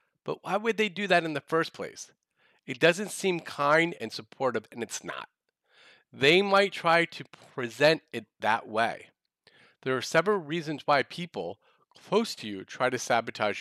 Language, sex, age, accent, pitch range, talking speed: English, male, 40-59, American, 125-175 Hz, 170 wpm